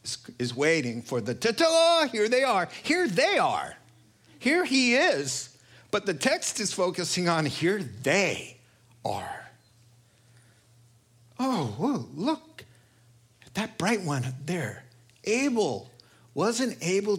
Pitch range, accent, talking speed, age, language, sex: 120-175 Hz, American, 120 wpm, 50-69, English, male